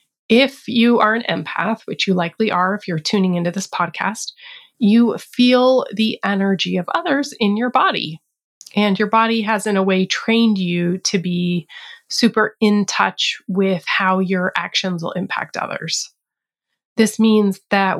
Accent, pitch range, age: American, 185-220 Hz, 30-49